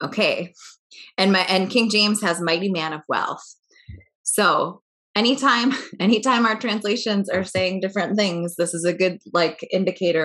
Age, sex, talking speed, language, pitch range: 20-39, female, 150 wpm, English, 165-210 Hz